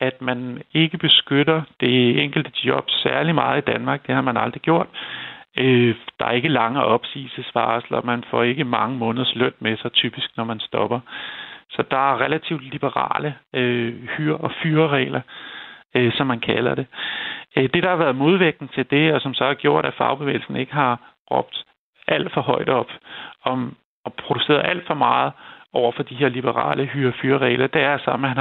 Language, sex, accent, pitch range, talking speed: Danish, male, native, 120-140 Hz, 180 wpm